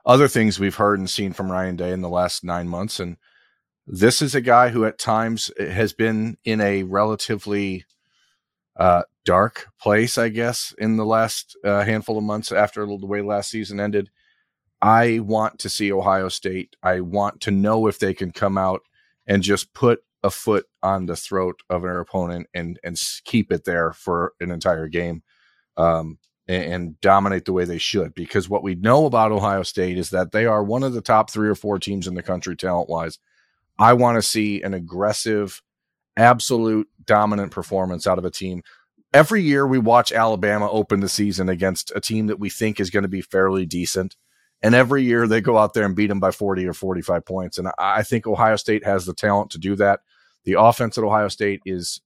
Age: 30-49